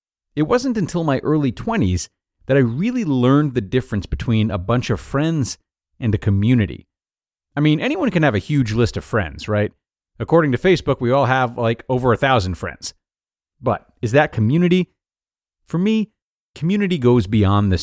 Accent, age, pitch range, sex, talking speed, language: American, 30-49, 100-135 Hz, male, 175 wpm, English